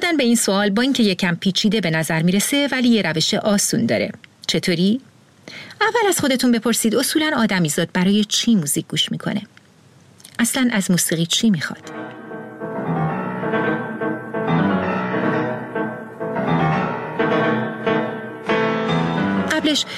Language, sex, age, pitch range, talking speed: Persian, female, 40-59, 170-235 Hz, 110 wpm